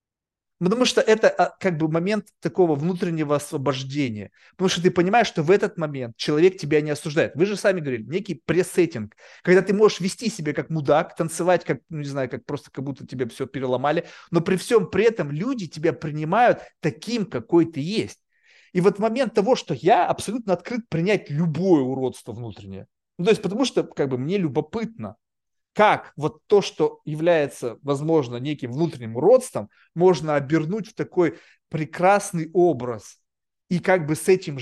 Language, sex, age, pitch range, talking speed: Russian, male, 30-49, 145-185 Hz, 175 wpm